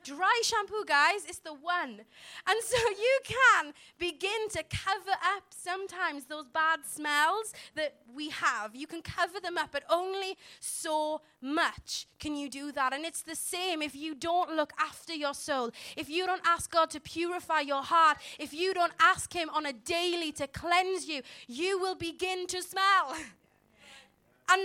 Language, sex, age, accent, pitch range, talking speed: English, female, 20-39, British, 300-375 Hz, 175 wpm